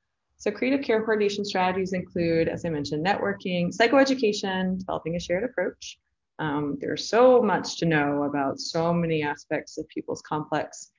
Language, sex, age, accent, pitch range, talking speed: English, female, 20-39, American, 145-180 Hz, 155 wpm